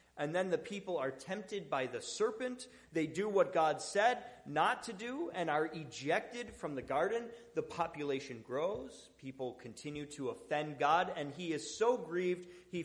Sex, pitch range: male, 130-185 Hz